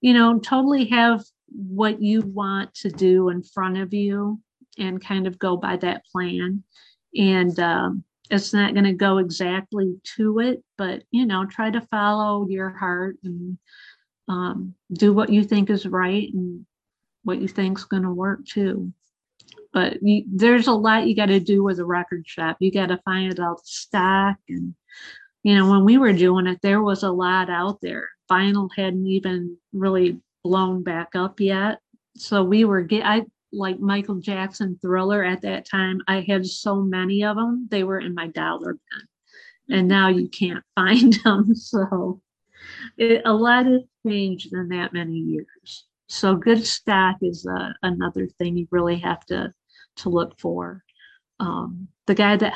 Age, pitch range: 50-69, 185-210 Hz